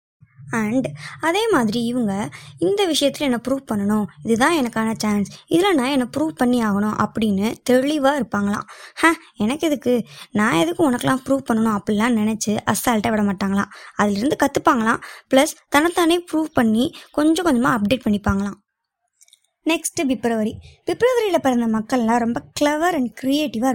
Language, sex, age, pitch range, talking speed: Tamil, male, 20-39, 220-295 Hz, 135 wpm